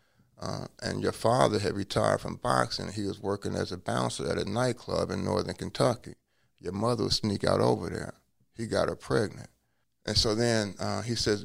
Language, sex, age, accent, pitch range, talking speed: English, male, 30-49, American, 100-120 Hz, 195 wpm